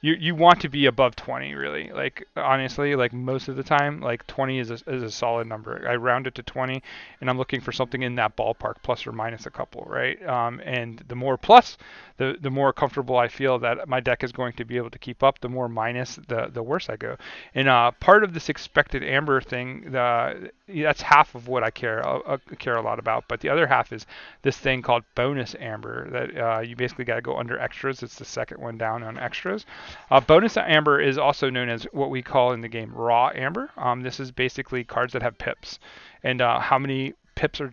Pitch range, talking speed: 120-140 Hz, 235 wpm